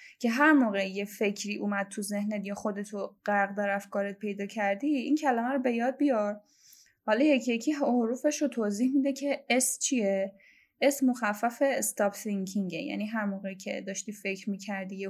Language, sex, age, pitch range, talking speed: Persian, female, 10-29, 205-270 Hz, 170 wpm